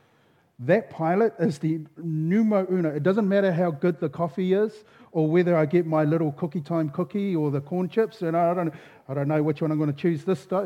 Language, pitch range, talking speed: English, 140-180 Hz, 230 wpm